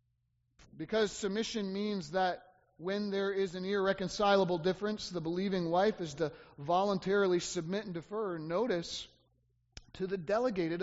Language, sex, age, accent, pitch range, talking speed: English, male, 30-49, American, 175-220 Hz, 125 wpm